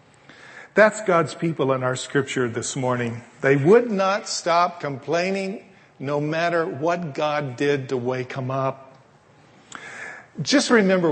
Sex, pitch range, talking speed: male, 135-170 Hz, 130 wpm